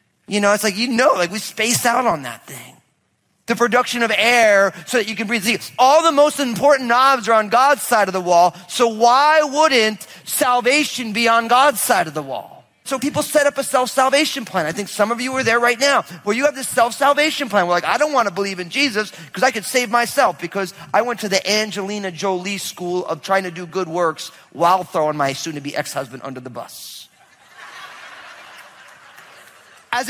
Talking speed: 210 wpm